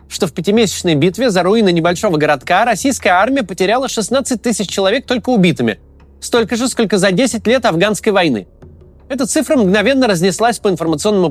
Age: 20-39